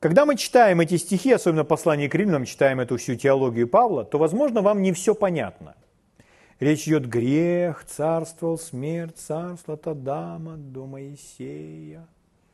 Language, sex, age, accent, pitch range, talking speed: Russian, male, 40-59, native, 150-215 Hz, 145 wpm